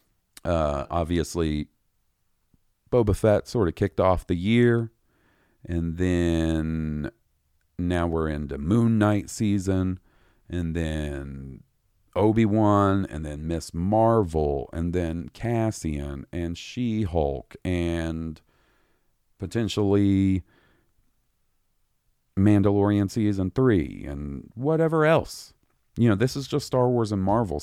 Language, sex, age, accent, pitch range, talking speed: English, male, 40-59, American, 80-115 Hz, 100 wpm